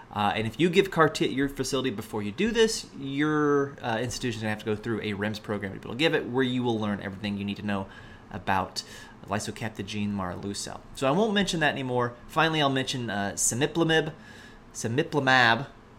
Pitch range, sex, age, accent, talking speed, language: 105-135 Hz, male, 30-49, American, 210 wpm, English